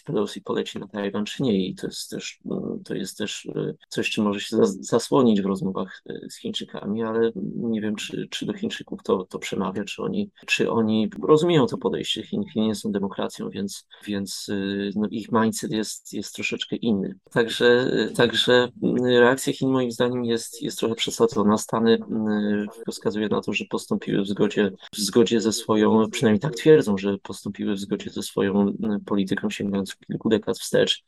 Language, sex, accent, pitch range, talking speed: Polish, male, native, 100-110 Hz, 170 wpm